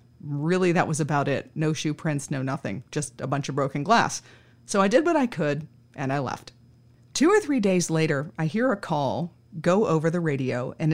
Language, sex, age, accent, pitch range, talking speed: English, female, 30-49, American, 150-195 Hz, 215 wpm